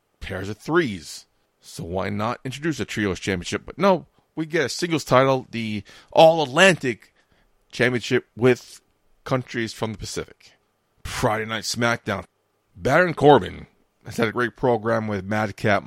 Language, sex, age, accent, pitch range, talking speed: English, male, 30-49, American, 100-135 Hz, 140 wpm